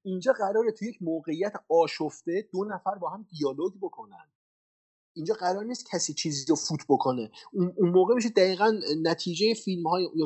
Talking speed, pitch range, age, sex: 160 wpm, 150-210 Hz, 30-49, male